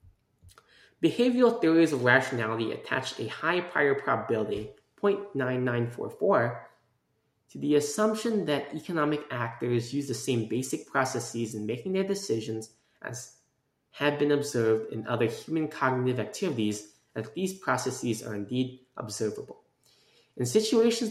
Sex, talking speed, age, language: male, 120 wpm, 20-39, English